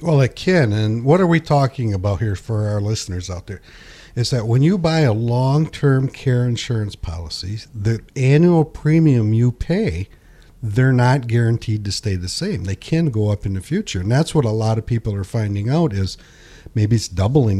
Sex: male